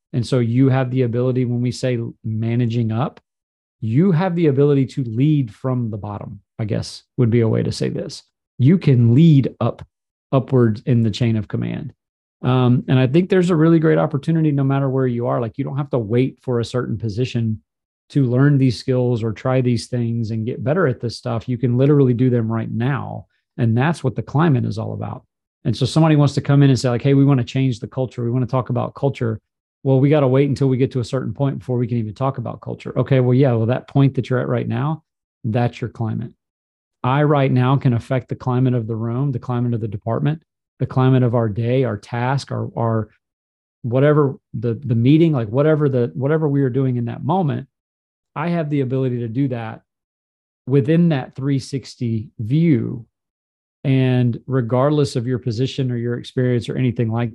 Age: 40-59